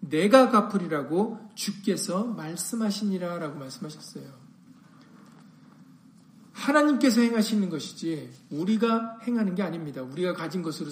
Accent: native